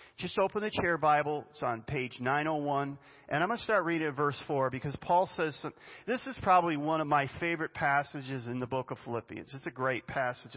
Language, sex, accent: English, male, American